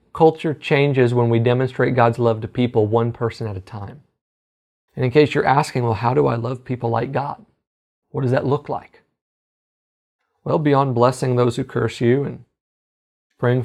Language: English